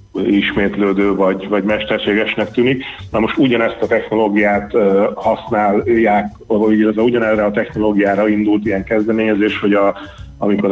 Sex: male